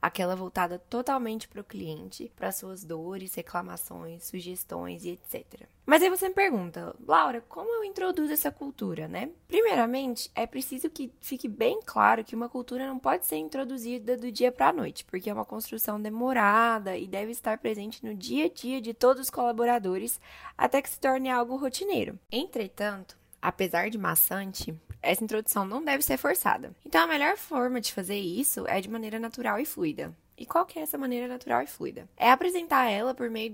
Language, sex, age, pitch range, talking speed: Portuguese, female, 10-29, 200-265 Hz, 185 wpm